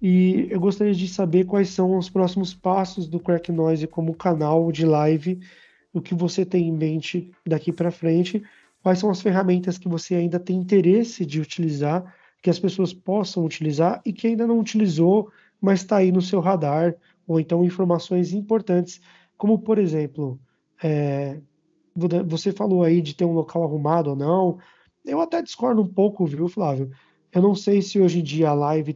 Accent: Brazilian